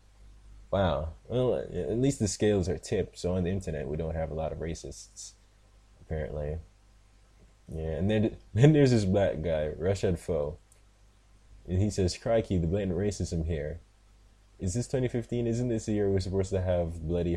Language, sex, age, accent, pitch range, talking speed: English, male, 20-39, American, 85-110 Hz, 175 wpm